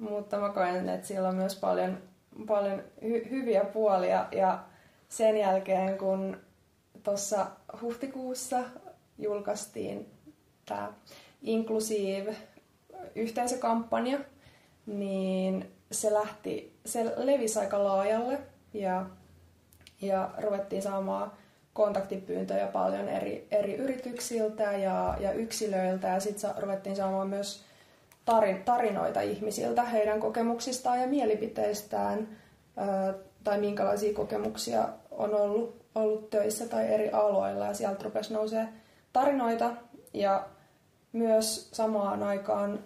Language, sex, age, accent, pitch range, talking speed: Finnish, female, 20-39, native, 195-225 Hz, 100 wpm